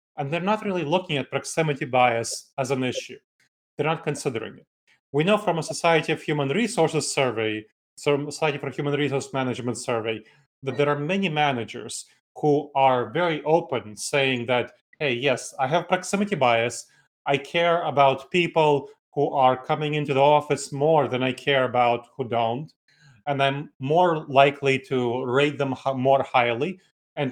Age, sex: 30-49, male